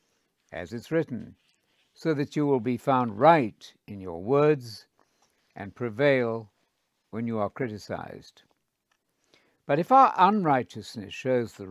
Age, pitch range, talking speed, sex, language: 60-79, 105-160 Hz, 130 wpm, male, English